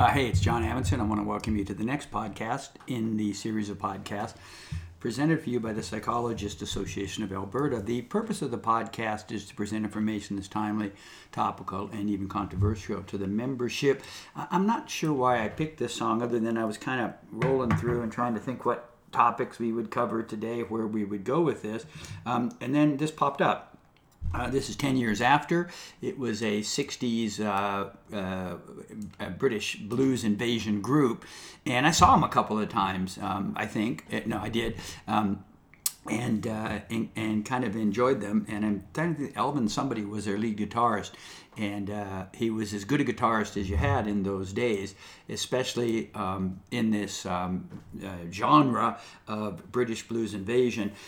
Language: English